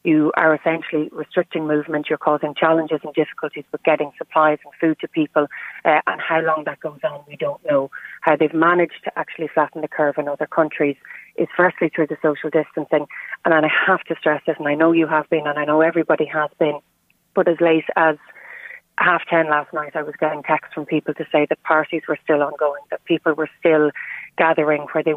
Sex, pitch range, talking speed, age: female, 150-165 Hz, 215 wpm, 30-49